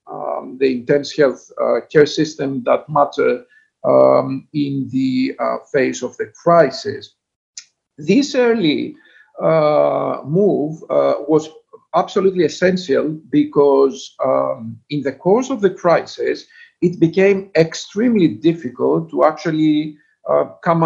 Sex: male